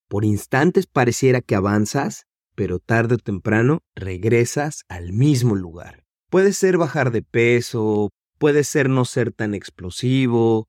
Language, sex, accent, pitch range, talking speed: Spanish, male, Mexican, 105-135 Hz, 135 wpm